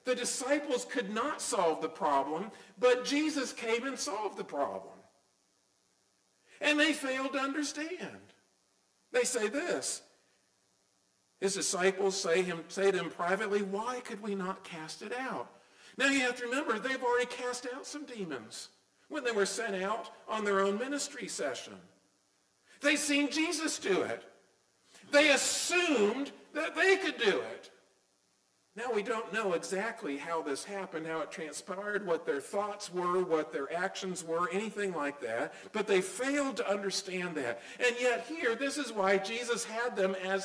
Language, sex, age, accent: English, male, 50-69, American